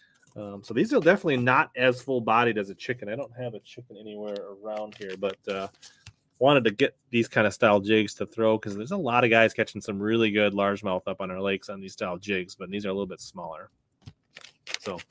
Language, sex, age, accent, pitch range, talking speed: English, male, 30-49, American, 100-125 Hz, 230 wpm